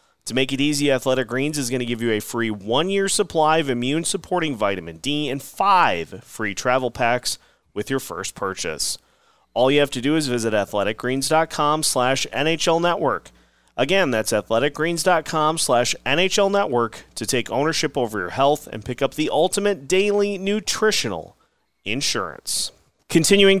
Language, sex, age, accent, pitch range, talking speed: English, male, 30-49, American, 120-160 Hz, 155 wpm